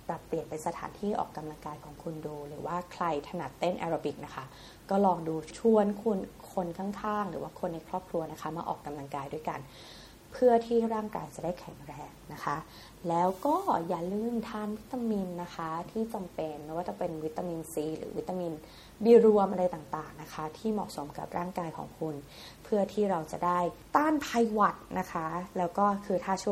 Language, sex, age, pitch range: Thai, female, 20-39, 155-200 Hz